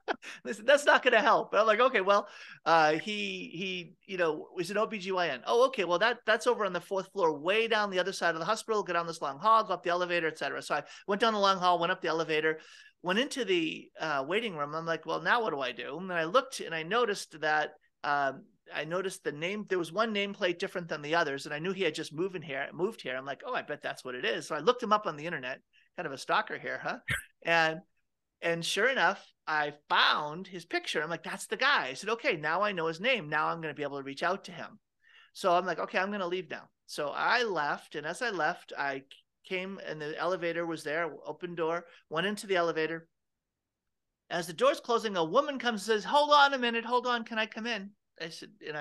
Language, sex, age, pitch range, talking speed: English, male, 30-49, 160-220 Hz, 260 wpm